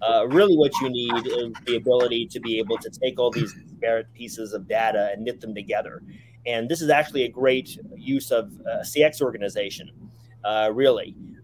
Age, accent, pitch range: 30-49, American, 110-135 Hz